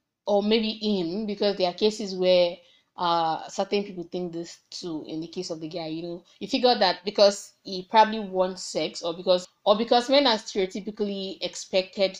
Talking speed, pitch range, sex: 185 wpm, 175-210 Hz, female